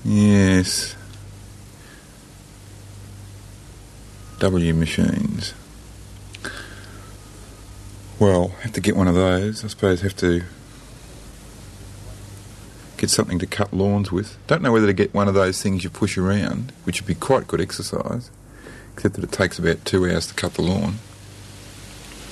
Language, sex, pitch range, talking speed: English, male, 95-105 Hz, 130 wpm